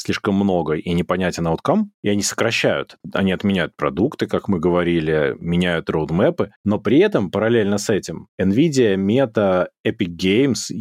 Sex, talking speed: male, 145 wpm